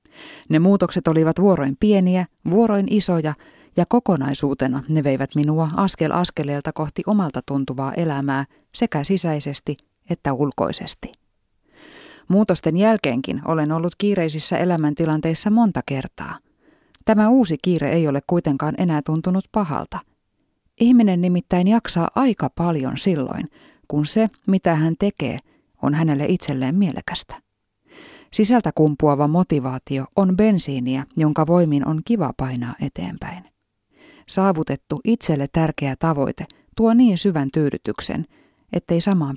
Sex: female